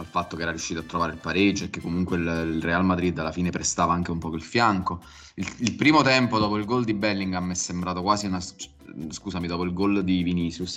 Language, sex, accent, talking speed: Italian, male, native, 240 wpm